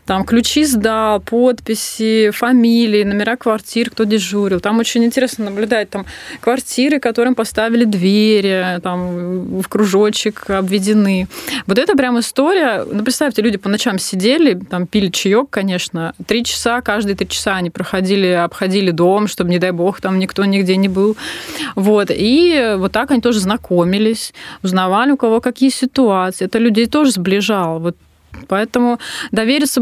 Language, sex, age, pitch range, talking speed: Russian, female, 20-39, 190-235 Hz, 145 wpm